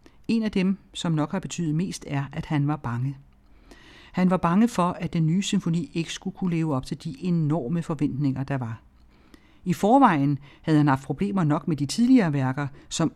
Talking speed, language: 200 wpm, Danish